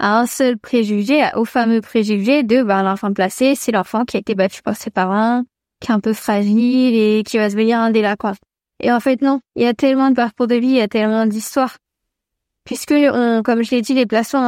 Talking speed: 250 wpm